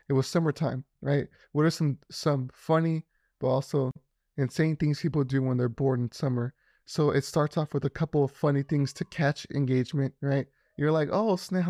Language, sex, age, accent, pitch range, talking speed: English, male, 20-39, American, 135-160 Hz, 195 wpm